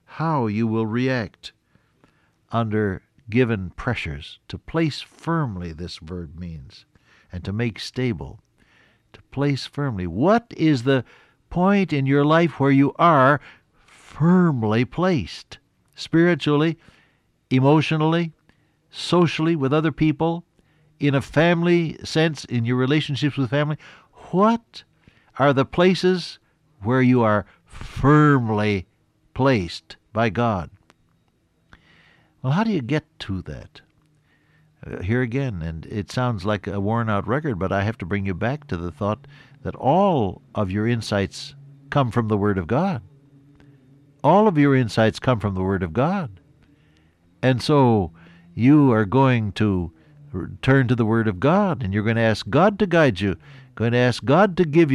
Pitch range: 105-150 Hz